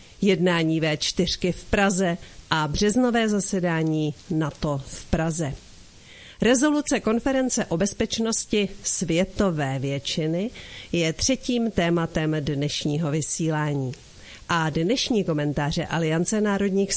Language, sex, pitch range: Czech, female, 160-200 Hz